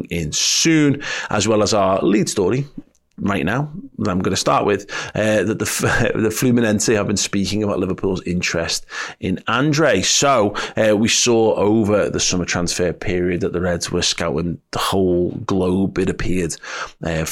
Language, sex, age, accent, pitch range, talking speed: English, male, 30-49, British, 85-105 Hz, 165 wpm